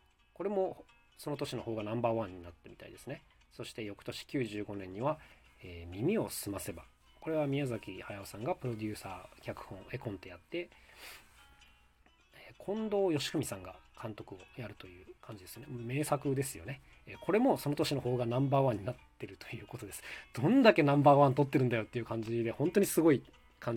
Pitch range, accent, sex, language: 105-145 Hz, native, male, Japanese